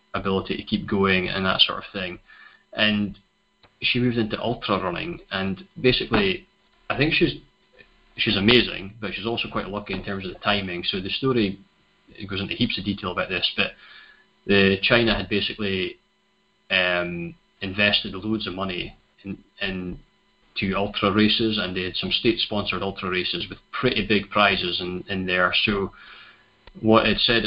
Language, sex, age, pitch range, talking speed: English, male, 20-39, 95-110 Hz, 165 wpm